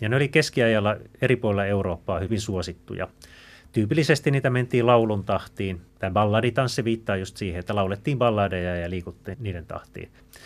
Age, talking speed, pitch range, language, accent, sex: 30-49, 150 wpm, 100-125 Hz, Finnish, native, male